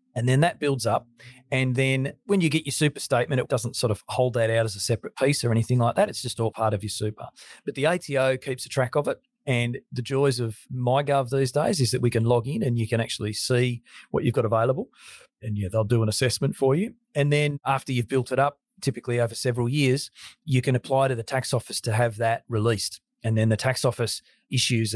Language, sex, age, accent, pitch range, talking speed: English, male, 40-59, Australian, 115-135 Hz, 245 wpm